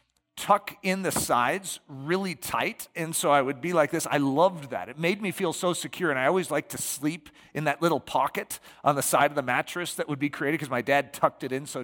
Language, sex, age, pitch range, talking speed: English, male, 40-59, 130-170 Hz, 250 wpm